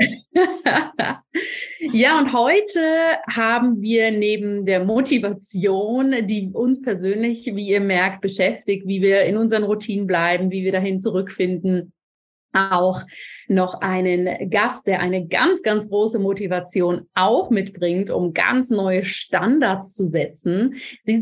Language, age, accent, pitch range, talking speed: German, 30-49, German, 190-235 Hz, 125 wpm